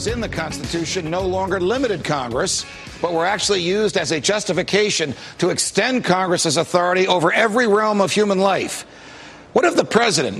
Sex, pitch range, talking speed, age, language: male, 170-195 Hz, 160 wpm, 60-79, English